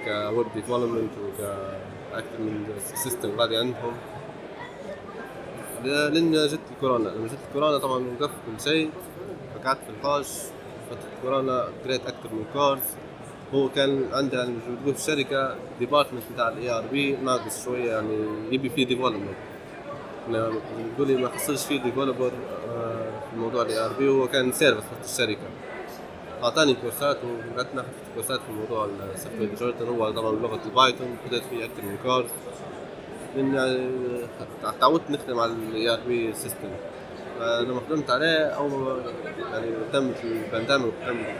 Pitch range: 115-140 Hz